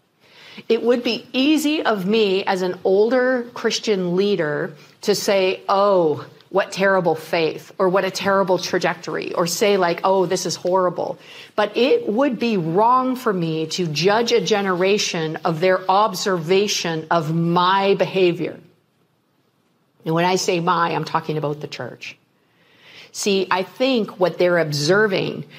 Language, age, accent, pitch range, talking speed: English, 50-69, American, 175-220 Hz, 145 wpm